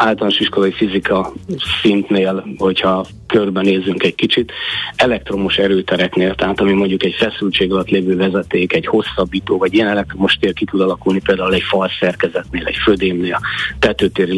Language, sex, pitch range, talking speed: Hungarian, male, 95-105 Hz, 150 wpm